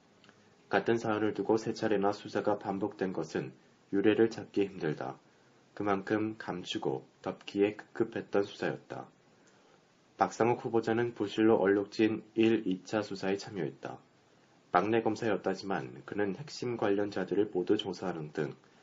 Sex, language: male, Korean